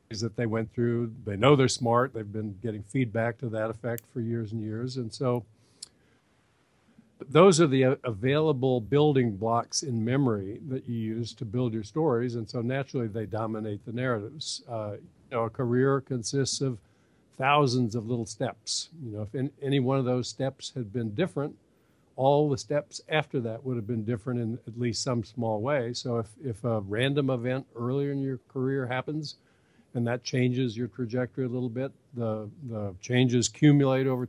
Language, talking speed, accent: English, 180 wpm, American